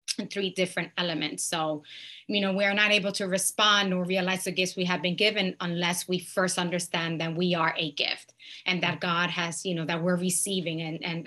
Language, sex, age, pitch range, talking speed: English, female, 20-39, 175-195 Hz, 210 wpm